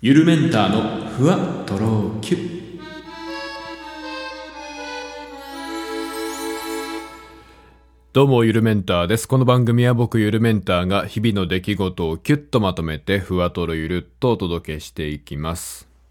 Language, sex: Japanese, male